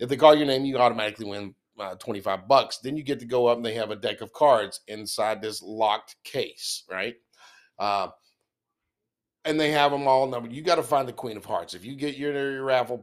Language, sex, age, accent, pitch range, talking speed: English, male, 40-59, American, 105-140 Hz, 225 wpm